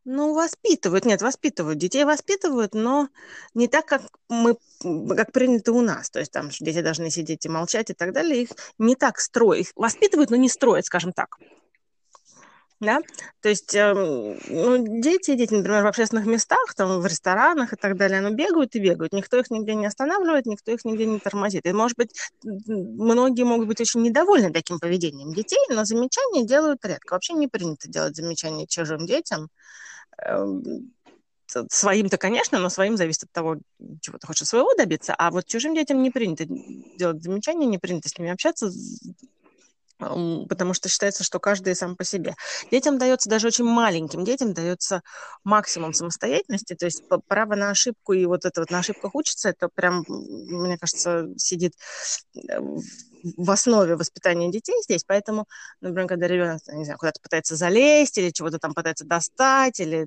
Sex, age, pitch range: female, 20-39, 175-250 Hz